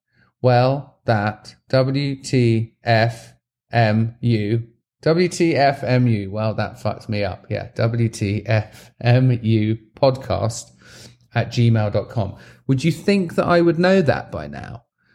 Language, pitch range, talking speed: English, 105-125 Hz, 95 wpm